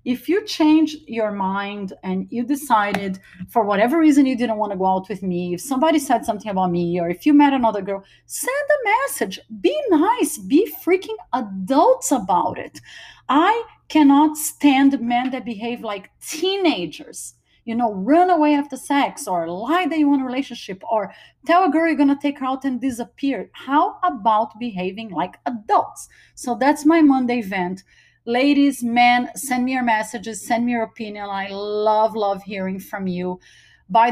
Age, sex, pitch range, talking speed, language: 30-49, female, 185-265 Hz, 180 wpm, English